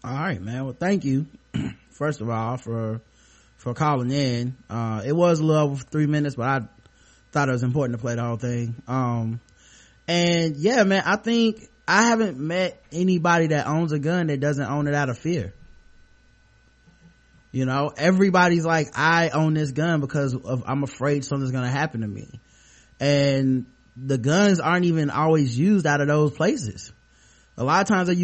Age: 20-39